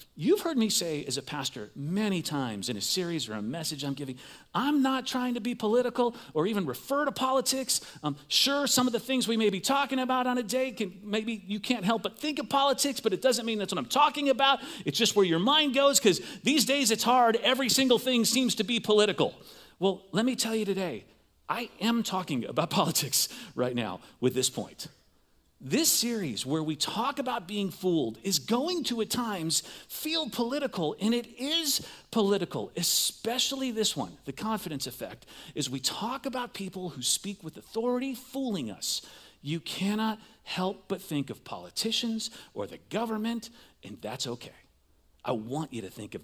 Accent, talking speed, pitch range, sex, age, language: American, 195 wpm, 155-255 Hz, male, 40-59, English